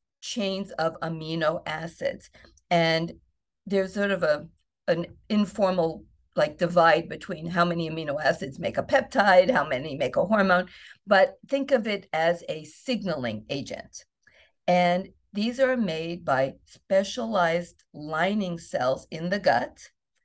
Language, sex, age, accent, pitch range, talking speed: English, female, 50-69, American, 165-210 Hz, 135 wpm